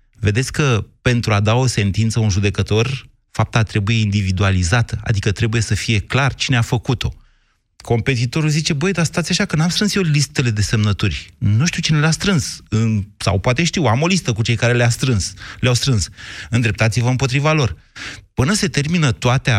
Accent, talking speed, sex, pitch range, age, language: native, 170 wpm, male, 105-150 Hz, 30-49, Romanian